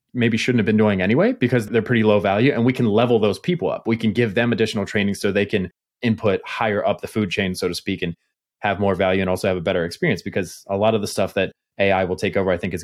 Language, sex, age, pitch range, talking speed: English, male, 30-49, 100-120 Hz, 280 wpm